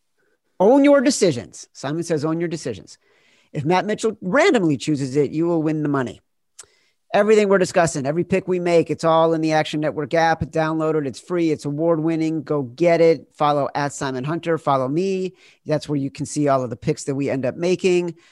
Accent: American